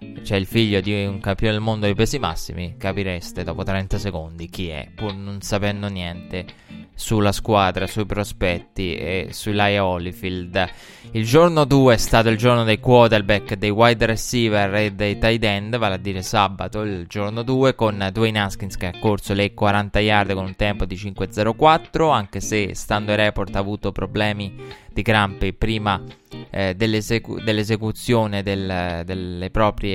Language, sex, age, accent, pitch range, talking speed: Italian, male, 20-39, native, 100-115 Hz, 165 wpm